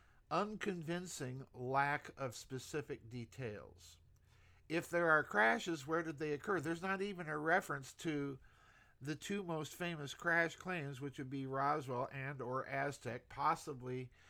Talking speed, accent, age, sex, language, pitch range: 140 wpm, American, 50-69, male, English, 125-160 Hz